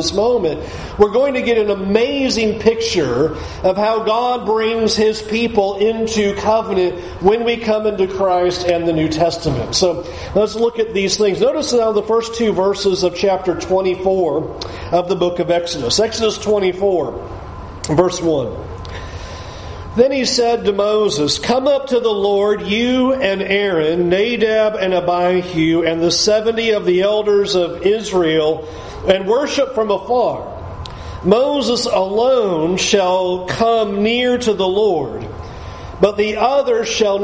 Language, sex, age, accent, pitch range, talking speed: English, male, 40-59, American, 180-230 Hz, 145 wpm